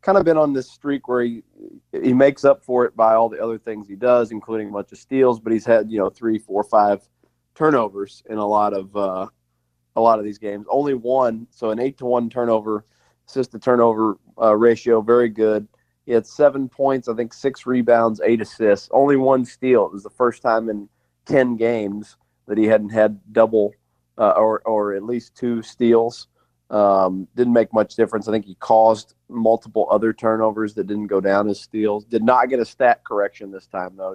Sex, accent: male, American